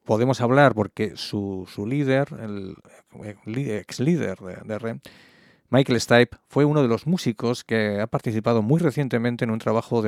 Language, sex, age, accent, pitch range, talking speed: English, male, 40-59, Spanish, 105-130 Hz, 175 wpm